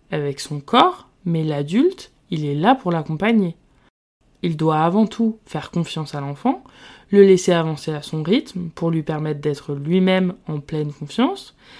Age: 20-39